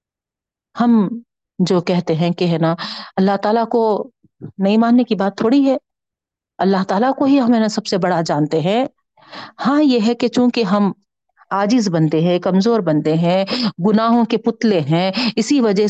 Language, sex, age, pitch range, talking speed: Urdu, female, 50-69, 185-255 Hz, 165 wpm